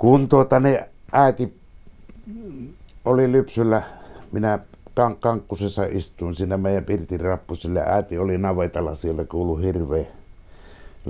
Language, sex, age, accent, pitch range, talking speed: Finnish, male, 60-79, native, 85-105 Hz, 110 wpm